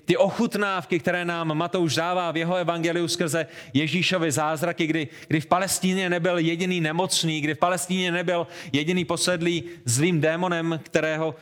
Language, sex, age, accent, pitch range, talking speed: Czech, male, 30-49, native, 145-170 Hz, 145 wpm